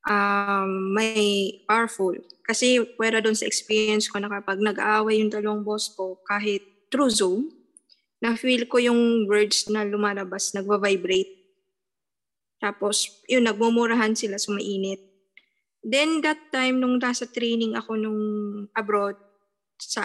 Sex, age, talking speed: female, 20-39, 125 wpm